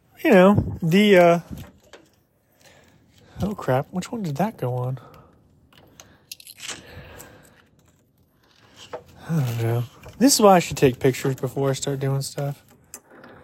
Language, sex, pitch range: English, male, 140-195 Hz